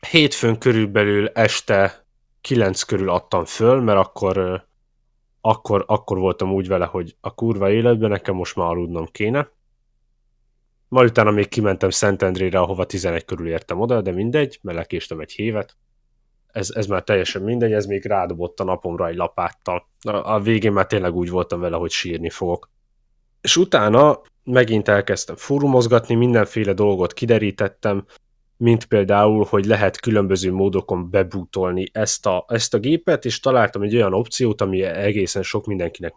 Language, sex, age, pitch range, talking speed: Hungarian, male, 10-29, 95-115 Hz, 150 wpm